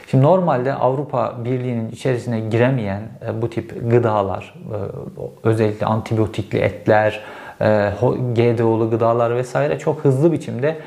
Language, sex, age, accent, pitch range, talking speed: Turkish, male, 50-69, native, 110-145 Hz, 100 wpm